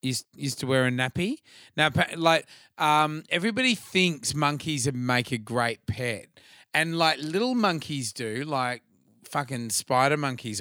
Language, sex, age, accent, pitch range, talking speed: English, male, 30-49, Australian, 115-150 Hz, 135 wpm